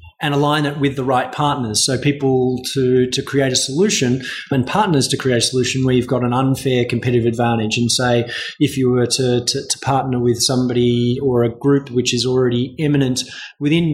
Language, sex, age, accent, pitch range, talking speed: English, male, 20-39, Australian, 125-140 Hz, 200 wpm